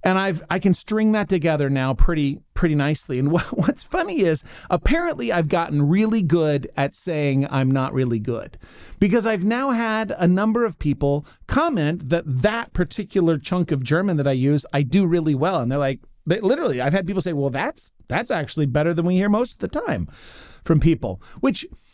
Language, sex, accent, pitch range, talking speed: English, male, American, 130-190 Hz, 195 wpm